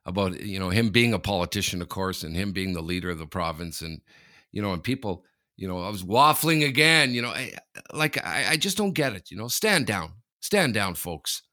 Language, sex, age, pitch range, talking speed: English, male, 50-69, 95-135 Hz, 235 wpm